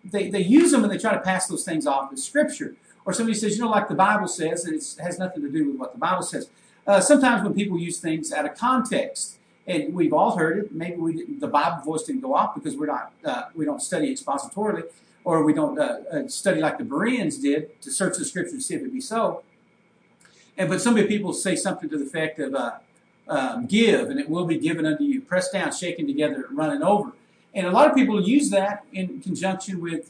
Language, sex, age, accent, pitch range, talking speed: English, male, 50-69, American, 180-275 Hz, 240 wpm